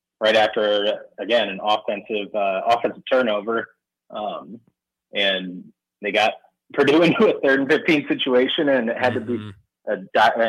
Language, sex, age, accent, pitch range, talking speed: English, male, 20-39, American, 100-125 Hz, 150 wpm